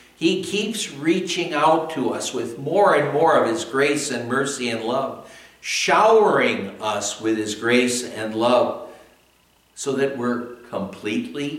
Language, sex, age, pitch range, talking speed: English, male, 60-79, 110-145 Hz, 145 wpm